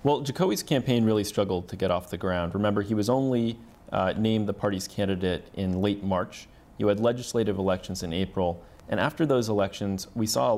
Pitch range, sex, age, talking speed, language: 95-110 Hz, male, 30-49, 200 wpm, English